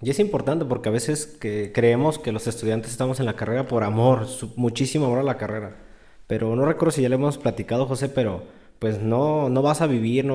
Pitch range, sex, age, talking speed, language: 115-150 Hz, male, 20-39, 225 wpm, Spanish